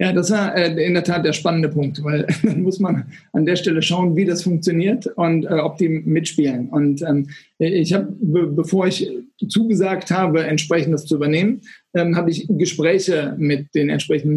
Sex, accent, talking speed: male, German, 190 wpm